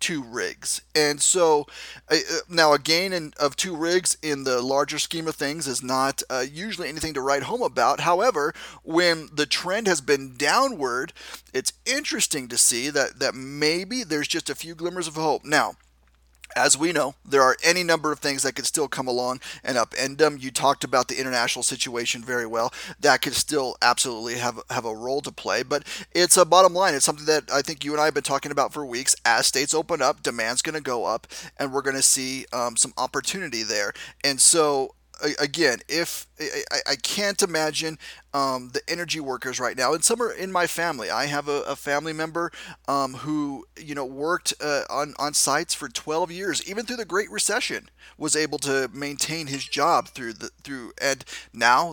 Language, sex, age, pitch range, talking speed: English, male, 30-49, 135-165 Hz, 200 wpm